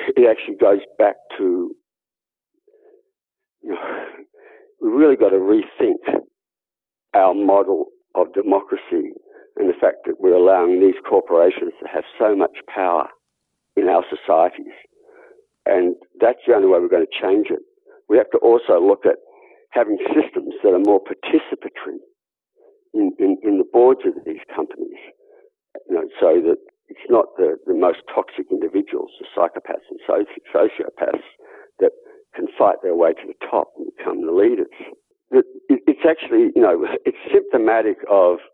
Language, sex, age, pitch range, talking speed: English, male, 60-79, 360-435 Hz, 150 wpm